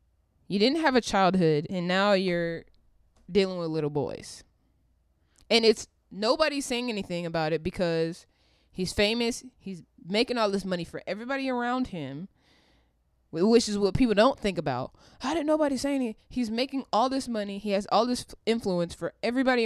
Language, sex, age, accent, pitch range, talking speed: English, female, 20-39, American, 170-225 Hz, 170 wpm